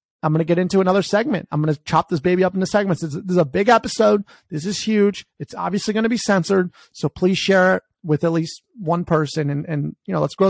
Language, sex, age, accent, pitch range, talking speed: English, male, 30-49, American, 165-220 Hz, 255 wpm